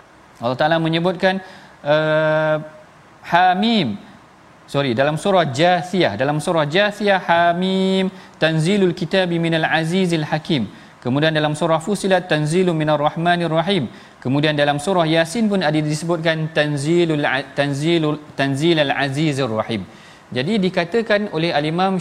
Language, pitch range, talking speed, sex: Malayalam, 145-180 Hz, 125 wpm, male